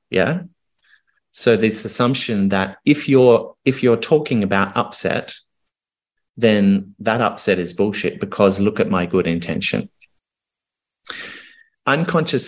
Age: 30-49